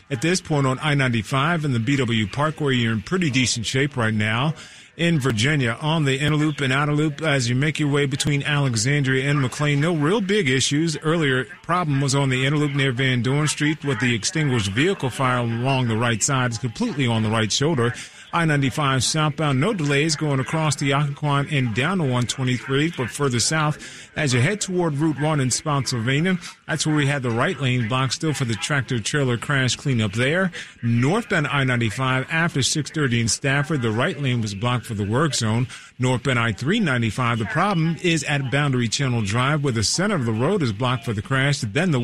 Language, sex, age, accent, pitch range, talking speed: English, male, 40-59, American, 125-150 Hz, 195 wpm